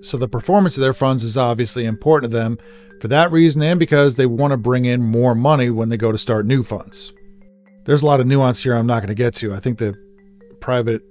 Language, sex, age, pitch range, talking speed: English, male, 40-59, 110-135 Hz, 250 wpm